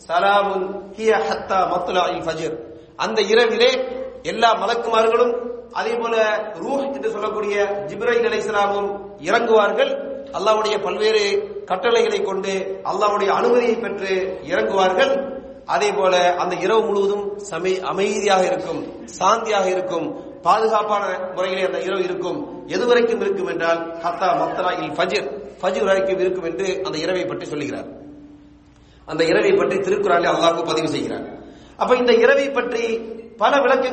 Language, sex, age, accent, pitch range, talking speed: English, male, 40-59, Indian, 200-260 Hz, 125 wpm